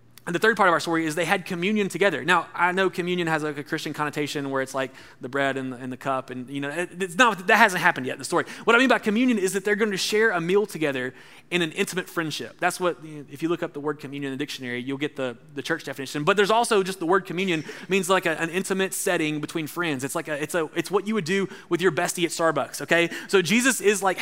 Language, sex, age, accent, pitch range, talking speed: English, male, 20-39, American, 155-205 Hz, 285 wpm